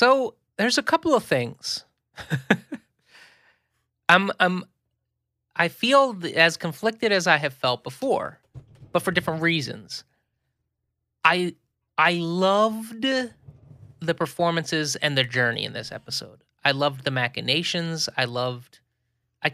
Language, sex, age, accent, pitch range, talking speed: English, male, 30-49, American, 130-175 Hz, 120 wpm